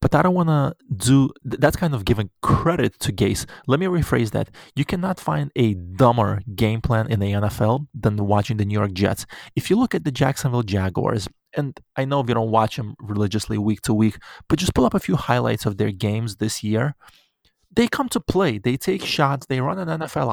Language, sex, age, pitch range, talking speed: English, male, 20-39, 110-150 Hz, 220 wpm